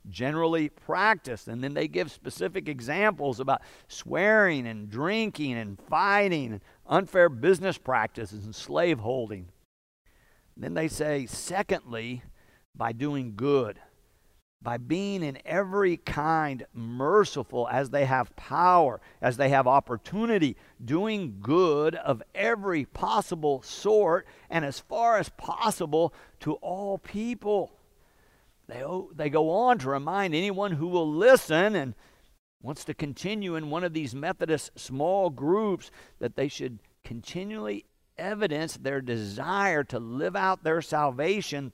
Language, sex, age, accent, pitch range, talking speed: English, male, 50-69, American, 120-165 Hz, 125 wpm